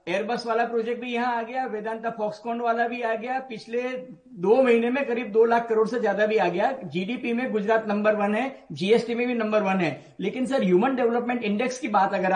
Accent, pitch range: native, 225-265 Hz